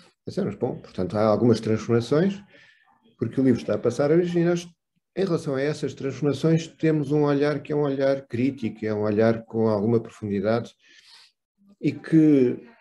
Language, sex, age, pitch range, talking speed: Portuguese, male, 50-69, 115-155 Hz, 165 wpm